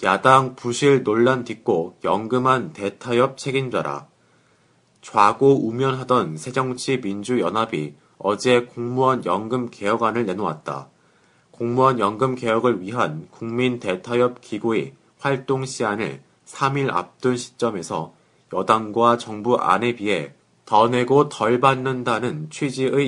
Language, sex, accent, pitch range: Korean, male, native, 115-135 Hz